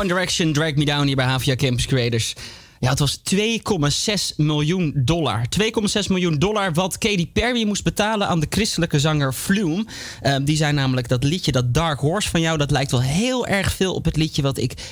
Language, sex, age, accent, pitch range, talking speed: Dutch, male, 20-39, Dutch, 130-180 Hz, 200 wpm